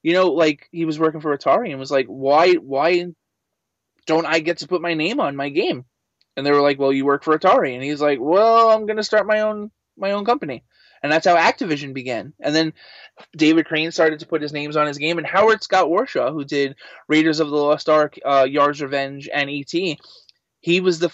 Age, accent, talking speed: 20-39, American, 235 wpm